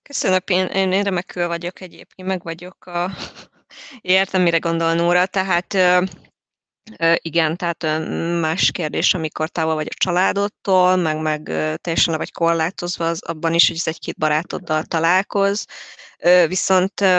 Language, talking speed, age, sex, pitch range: Hungarian, 120 wpm, 20-39, female, 165-190 Hz